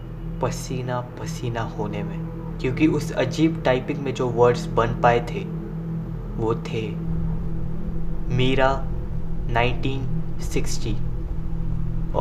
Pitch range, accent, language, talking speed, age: 130-160 Hz, native, Hindi, 90 wpm, 20-39